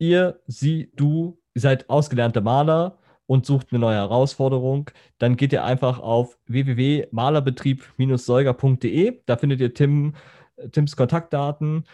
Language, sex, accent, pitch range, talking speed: German, male, German, 115-140 Hz, 115 wpm